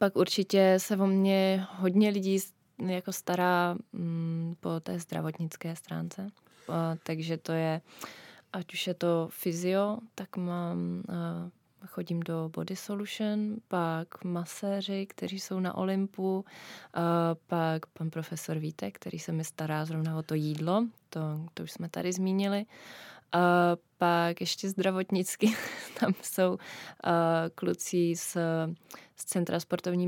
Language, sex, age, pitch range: Czech, female, 20-39, 165-190 Hz